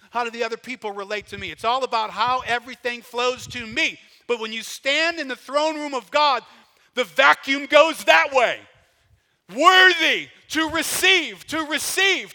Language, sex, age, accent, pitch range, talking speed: English, male, 50-69, American, 190-310 Hz, 175 wpm